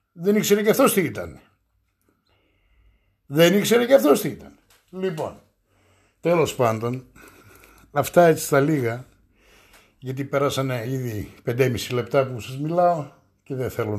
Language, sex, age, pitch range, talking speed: Greek, male, 60-79, 105-140 Hz, 130 wpm